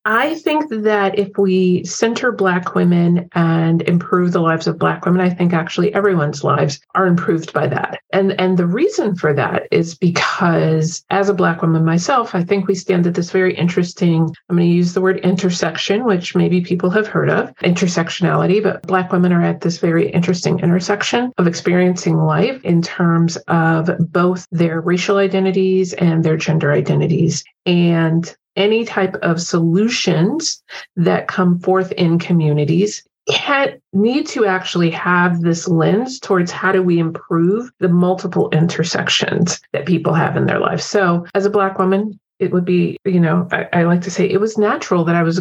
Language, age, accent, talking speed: English, 40-59, American, 175 wpm